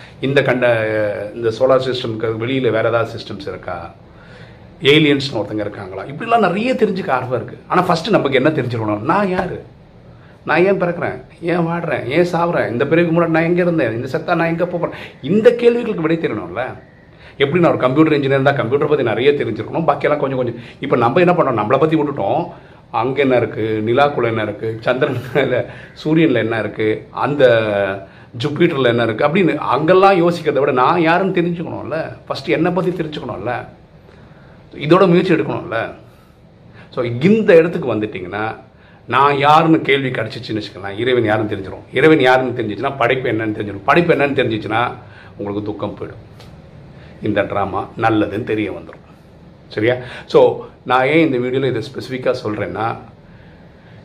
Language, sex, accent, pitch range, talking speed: Tamil, male, native, 115-165 Hz, 90 wpm